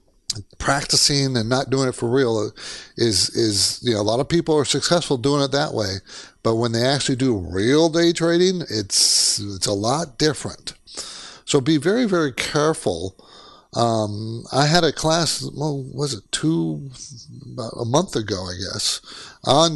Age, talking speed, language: 50-69, 165 wpm, English